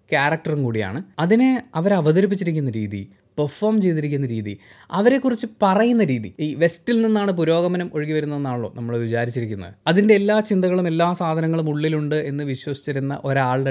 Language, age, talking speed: Malayalam, 20-39, 125 wpm